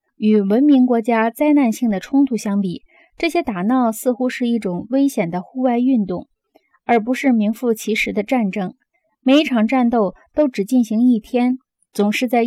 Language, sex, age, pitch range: Chinese, female, 20-39, 210-265 Hz